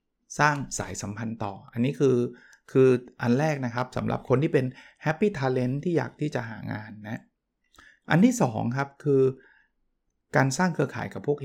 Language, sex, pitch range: Thai, male, 120-150 Hz